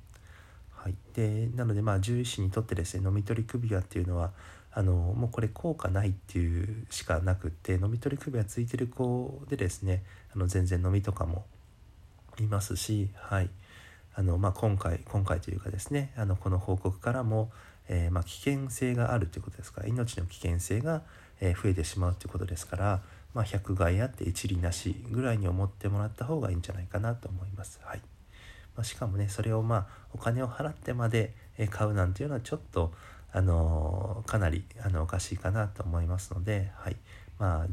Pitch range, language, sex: 90-110 Hz, Japanese, male